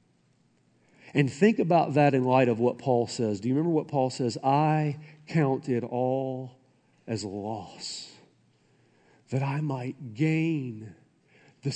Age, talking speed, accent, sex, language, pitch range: 50-69, 140 wpm, American, male, English, 105-135 Hz